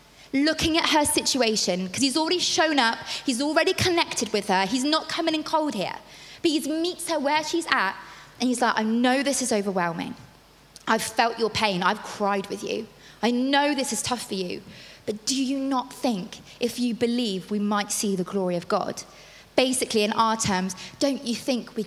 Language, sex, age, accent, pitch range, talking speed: English, female, 20-39, British, 205-265 Hz, 200 wpm